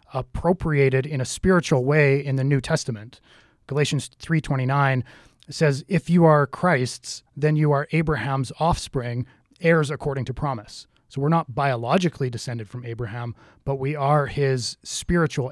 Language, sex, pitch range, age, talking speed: English, male, 125-150 Hz, 30-49, 145 wpm